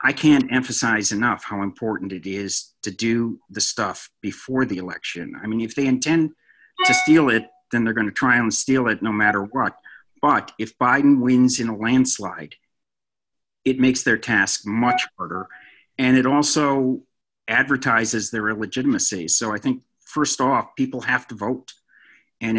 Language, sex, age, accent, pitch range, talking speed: English, male, 50-69, American, 105-130 Hz, 165 wpm